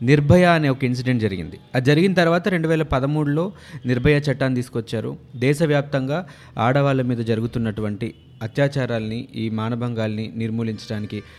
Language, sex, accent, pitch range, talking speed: Telugu, male, native, 115-145 Hz, 115 wpm